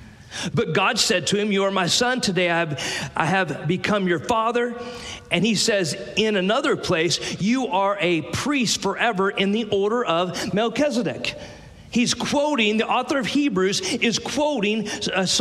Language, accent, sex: English, American, male